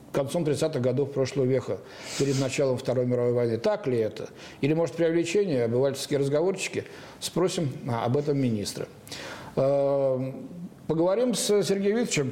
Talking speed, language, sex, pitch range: 125 wpm, Russian, male, 125-165 Hz